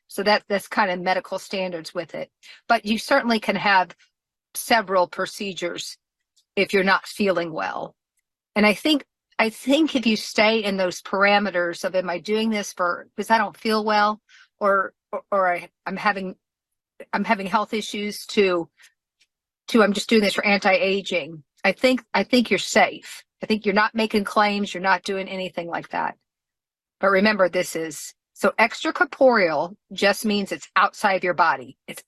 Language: English